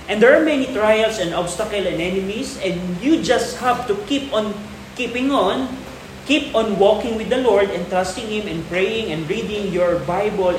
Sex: male